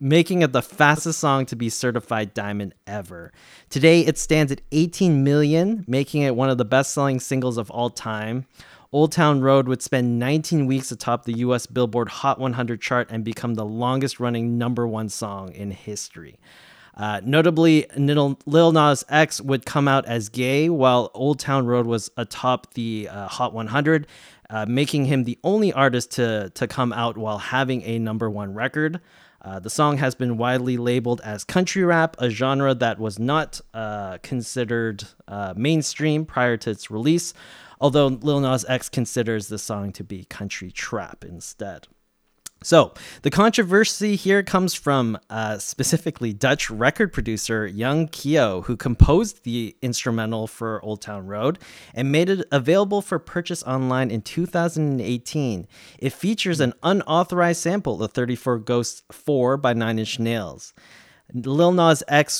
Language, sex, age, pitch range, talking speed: English, male, 20-39, 115-150 Hz, 160 wpm